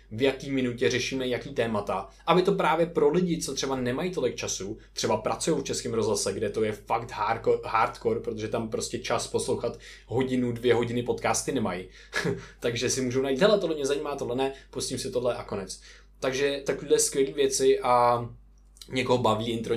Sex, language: male, Czech